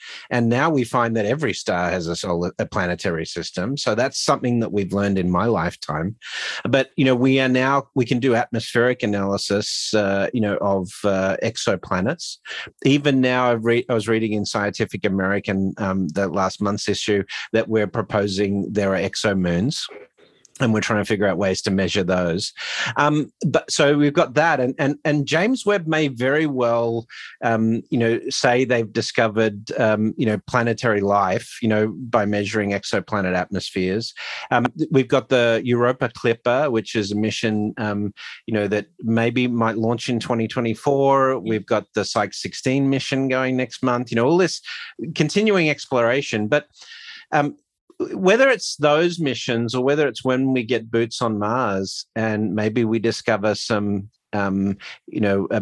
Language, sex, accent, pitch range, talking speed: English, male, Australian, 100-130 Hz, 175 wpm